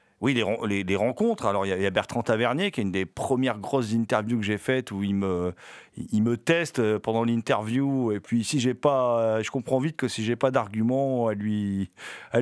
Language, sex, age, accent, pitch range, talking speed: French, male, 40-59, French, 100-130 Hz, 225 wpm